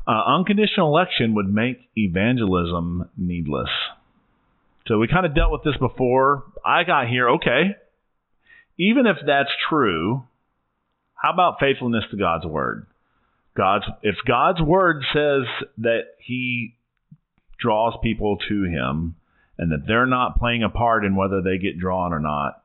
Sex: male